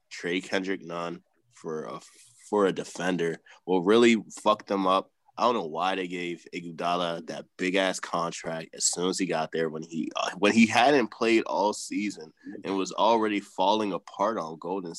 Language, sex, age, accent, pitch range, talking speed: English, male, 20-39, American, 80-110 Hz, 185 wpm